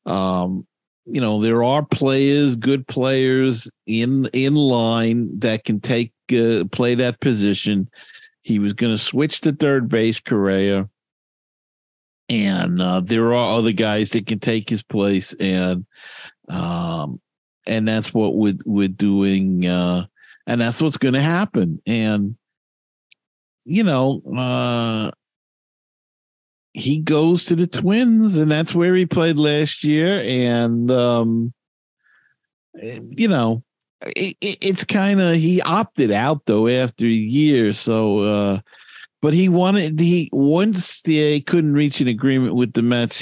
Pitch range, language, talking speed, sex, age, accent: 110-150 Hz, English, 135 wpm, male, 50-69, American